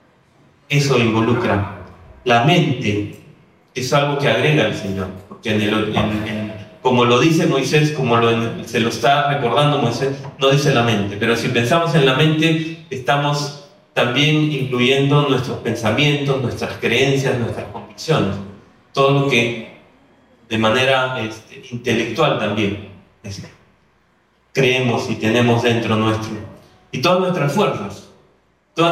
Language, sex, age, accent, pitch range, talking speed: Spanish, male, 30-49, Argentinian, 110-145 Hz, 120 wpm